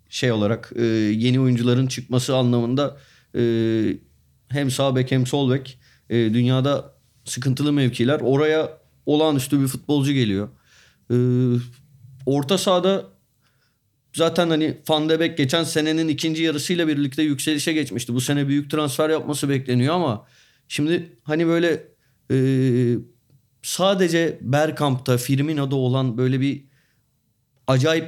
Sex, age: male, 30-49